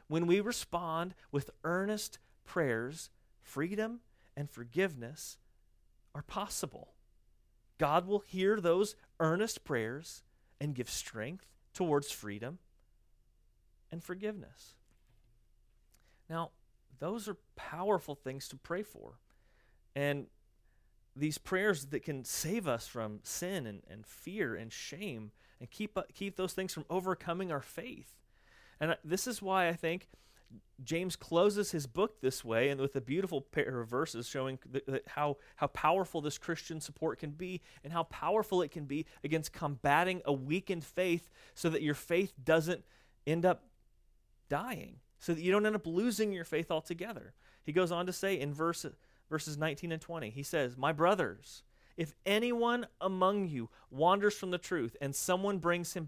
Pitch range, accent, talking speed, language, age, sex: 130-185 Hz, American, 150 wpm, English, 40-59, male